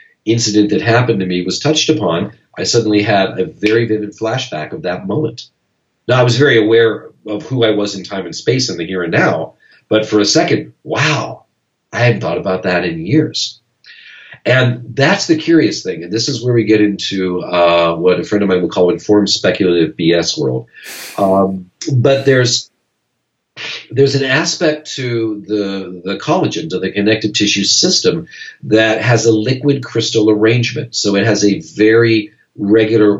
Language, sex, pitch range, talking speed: English, male, 100-130 Hz, 180 wpm